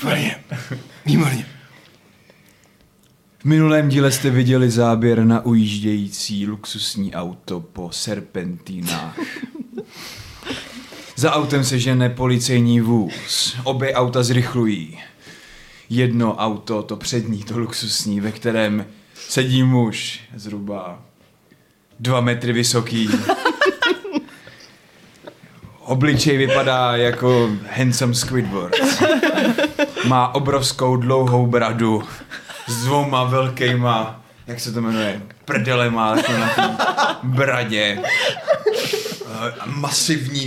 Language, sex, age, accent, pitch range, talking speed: Czech, male, 20-39, native, 110-135 Hz, 85 wpm